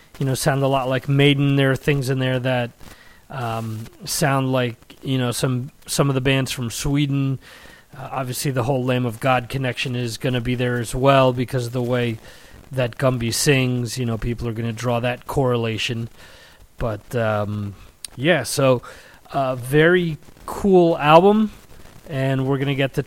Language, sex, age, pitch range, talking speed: English, male, 30-49, 120-140 Hz, 180 wpm